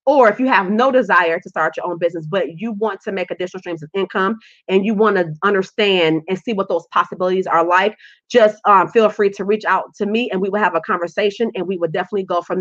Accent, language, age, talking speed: American, English, 30-49, 250 wpm